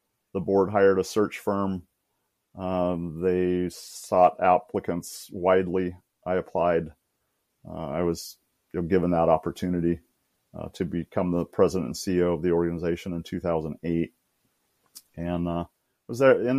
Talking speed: 125 wpm